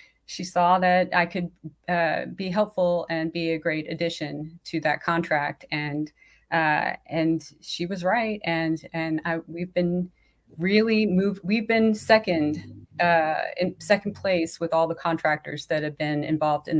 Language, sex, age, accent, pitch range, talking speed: English, female, 30-49, American, 155-185 Hz, 155 wpm